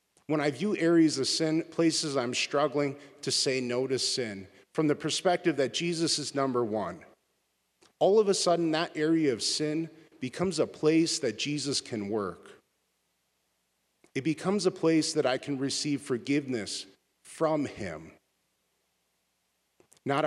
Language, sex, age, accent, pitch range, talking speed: English, male, 40-59, American, 120-160 Hz, 145 wpm